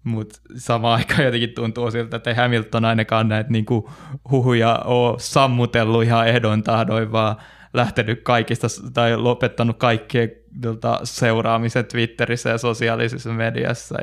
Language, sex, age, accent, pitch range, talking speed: Finnish, male, 20-39, native, 115-120 Hz, 125 wpm